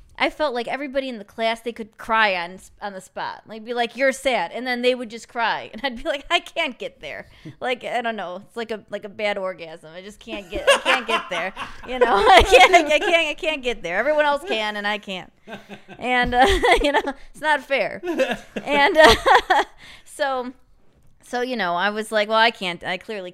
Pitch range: 185-235 Hz